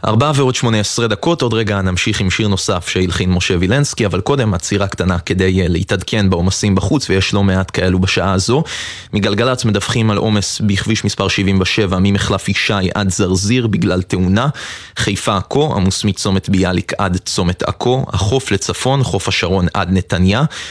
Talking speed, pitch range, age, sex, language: 160 wpm, 95-110 Hz, 20-39, male, Hebrew